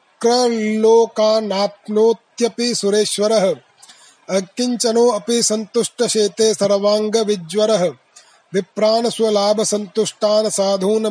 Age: 30-49